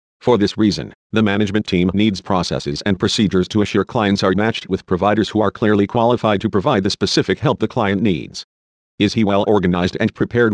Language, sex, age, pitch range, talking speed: English, male, 50-69, 95-110 Hz, 200 wpm